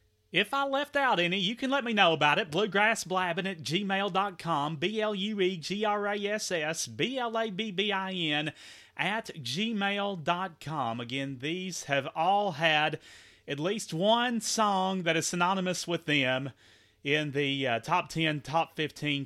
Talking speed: 170 wpm